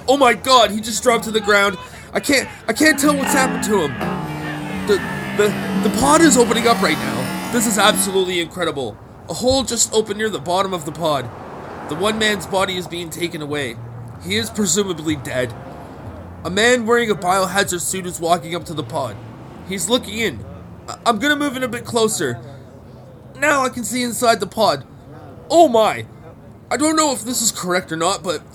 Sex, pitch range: male, 140-225 Hz